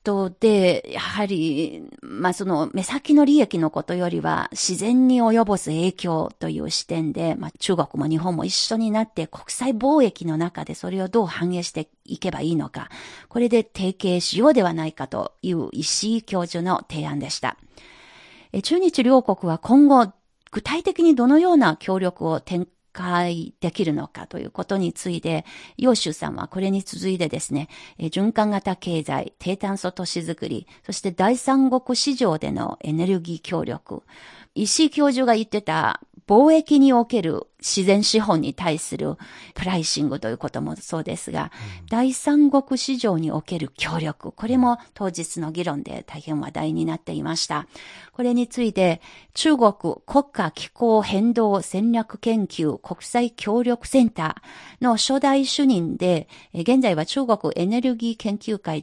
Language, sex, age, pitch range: Japanese, female, 40-59, 165-240 Hz